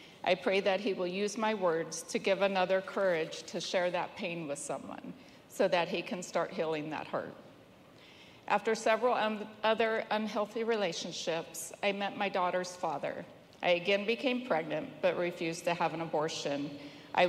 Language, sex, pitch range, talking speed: English, female, 165-200 Hz, 165 wpm